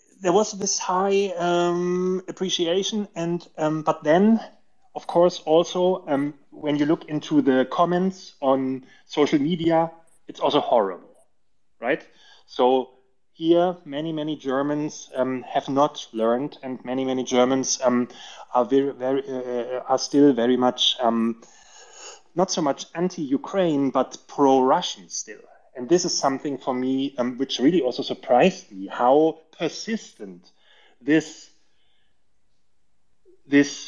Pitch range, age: 130-170 Hz, 30-49